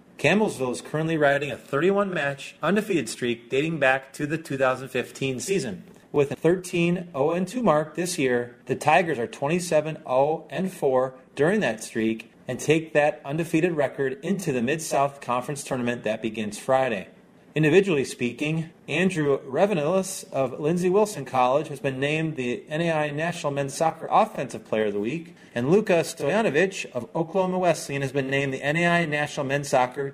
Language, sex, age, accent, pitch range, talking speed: English, male, 30-49, American, 130-170 Hz, 150 wpm